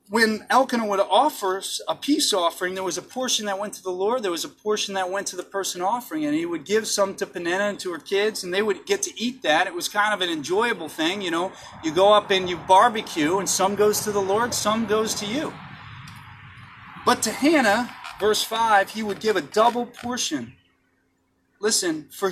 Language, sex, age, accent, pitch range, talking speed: English, male, 30-49, American, 185-230 Hz, 220 wpm